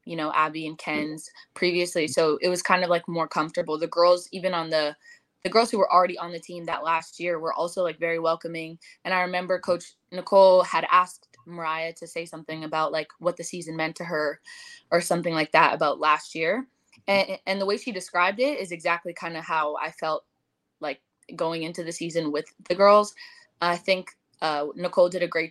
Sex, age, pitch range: female, 10-29, 160-180 Hz